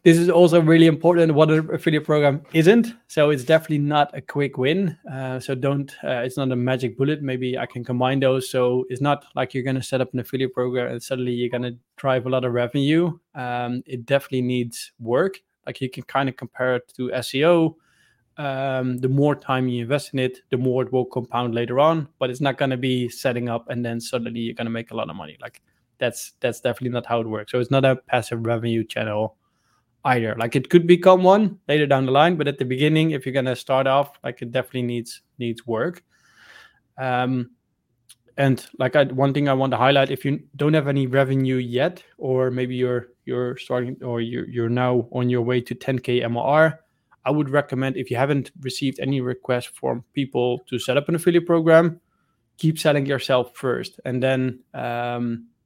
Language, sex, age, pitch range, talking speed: English, male, 20-39, 125-145 Hz, 210 wpm